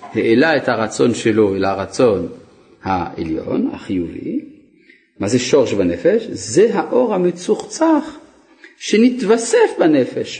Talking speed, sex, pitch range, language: 90 wpm, male, 110-185 Hz, Hebrew